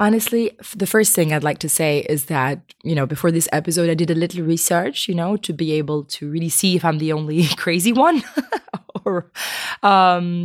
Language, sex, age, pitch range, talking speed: English, female, 20-39, 155-180 Hz, 205 wpm